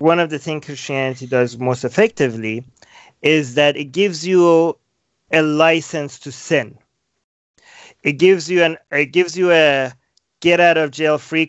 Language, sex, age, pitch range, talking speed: English, male, 30-49, 140-165 Hz, 155 wpm